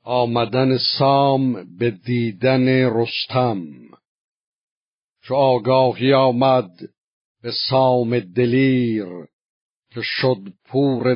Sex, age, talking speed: male, 50-69, 75 wpm